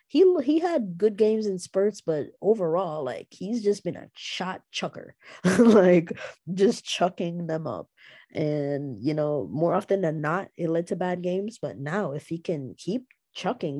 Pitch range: 155-200 Hz